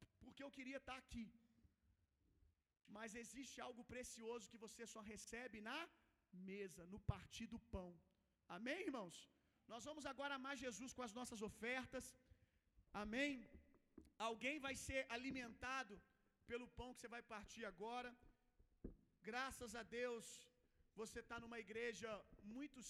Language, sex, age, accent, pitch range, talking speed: Gujarati, male, 40-59, Brazilian, 230-270 Hz, 135 wpm